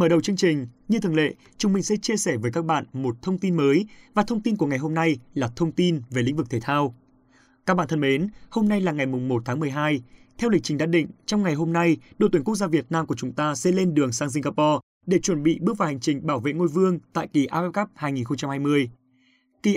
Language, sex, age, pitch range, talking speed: Vietnamese, male, 20-39, 140-190 Hz, 260 wpm